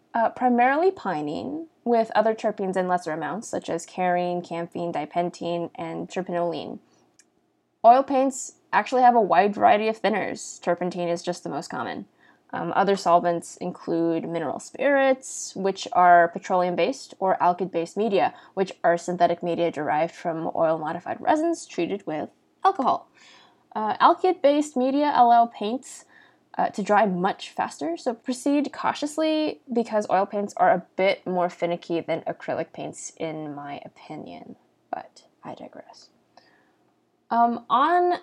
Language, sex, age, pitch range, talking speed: English, female, 10-29, 175-265 Hz, 140 wpm